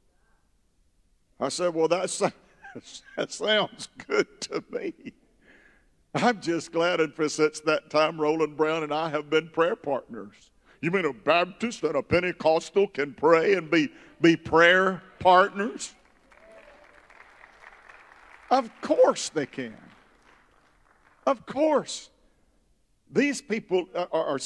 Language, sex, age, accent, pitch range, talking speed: English, male, 50-69, American, 150-200 Hz, 115 wpm